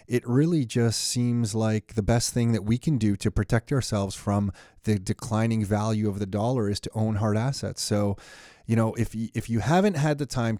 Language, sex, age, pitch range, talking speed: English, male, 30-49, 110-125 Hz, 210 wpm